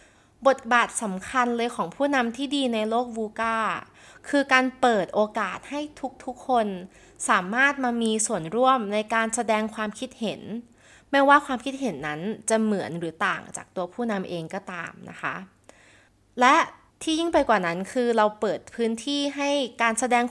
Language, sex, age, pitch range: Thai, female, 20-39, 190-255 Hz